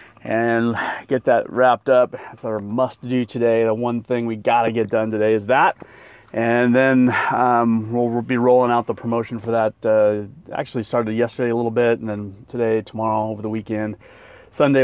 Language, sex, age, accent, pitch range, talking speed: English, male, 30-49, American, 110-130 Hz, 185 wpm